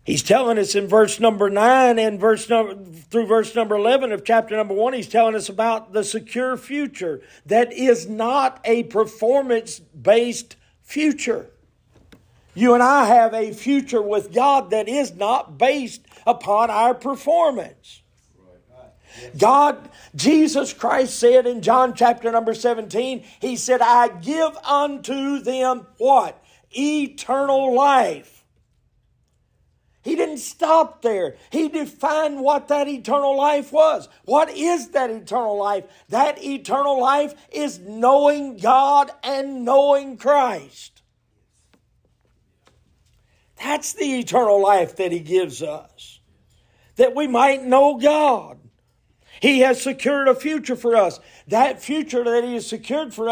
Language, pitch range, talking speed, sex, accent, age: English, 220-280 Hz, 130 wpm, male, American, 50-69